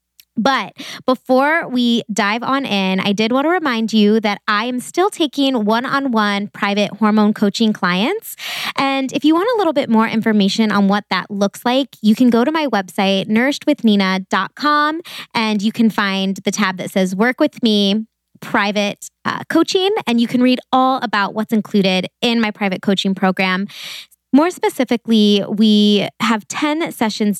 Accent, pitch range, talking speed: American, 200-245 Hz, 165 wpm